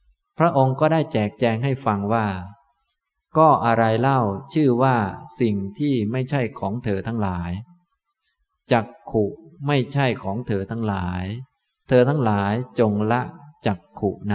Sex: male